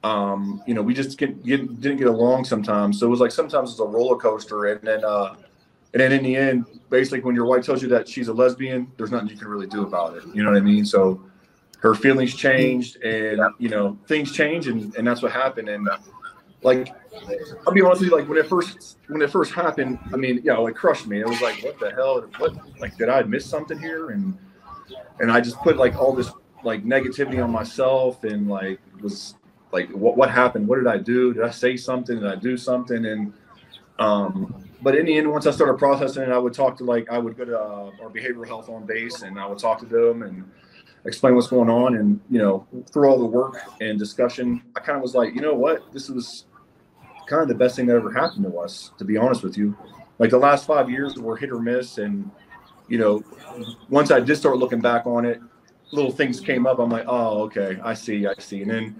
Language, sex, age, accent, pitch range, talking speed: English, male, 30-49, American, 110-135 Hz, 240 wpm